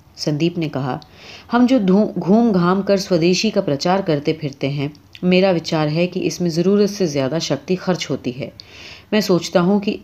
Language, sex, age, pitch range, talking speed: Urdu, female, 30-49, 150-200 Hz, 185 wpm